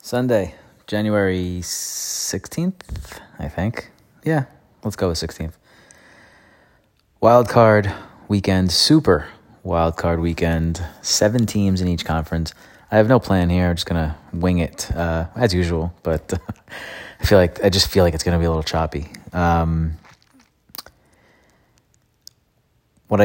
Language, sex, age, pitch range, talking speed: English, male, 30-49, 80-95 Hz, 135 wpm